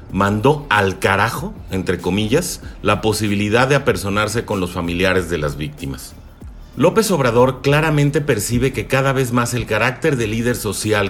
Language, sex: Spanish, male